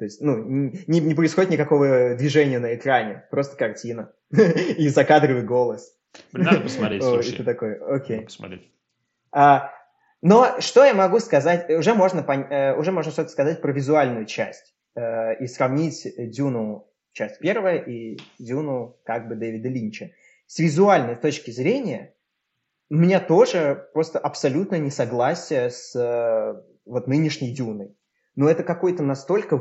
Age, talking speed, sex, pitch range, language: 20-39, 120 wpm, male, 125-165 Hz, Russian